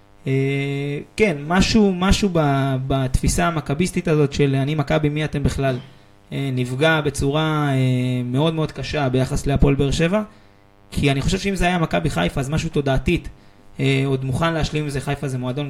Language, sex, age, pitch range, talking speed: Hebrew, male, 20-39, 130-150 Hz, 170 wpm